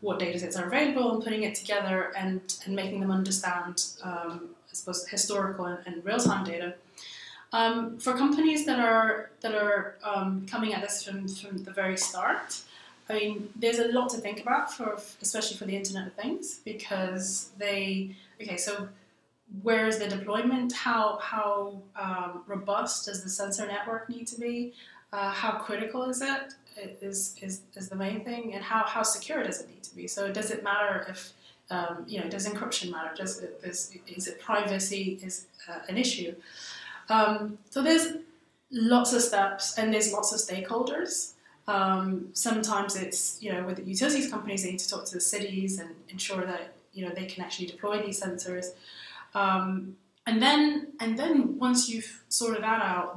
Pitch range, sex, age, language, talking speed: 185-225 Hz, female, 20-39, English, 180 wpm